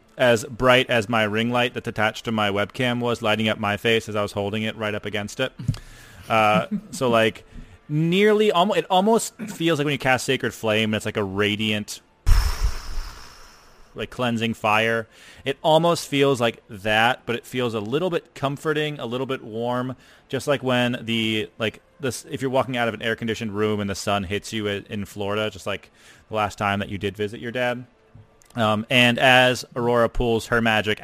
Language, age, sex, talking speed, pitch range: English, 30-49, male, 195 wpm, 105-125 Hz